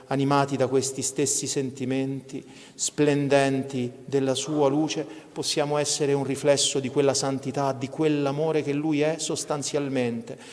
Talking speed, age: 125 wpm, 40-59